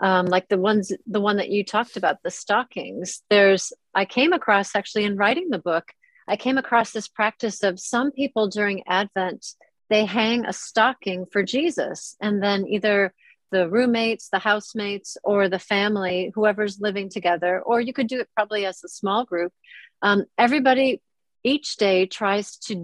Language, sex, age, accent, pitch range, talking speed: English, female, 40-59, American, 190-230 Hz, 175 wpm